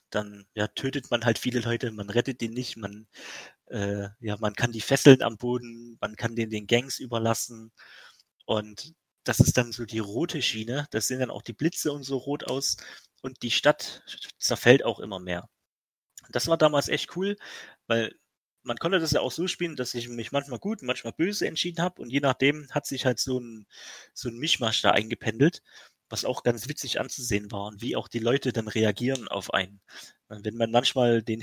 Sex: male